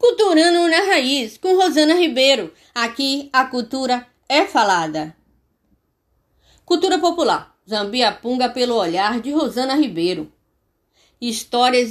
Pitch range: 195-270 Hz